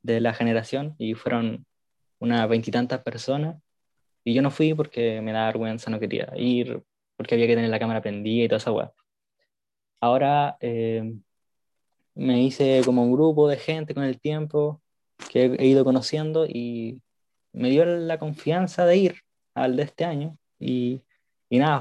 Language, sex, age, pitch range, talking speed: English, male, 20-39, 115-150 Hz, 165 wpm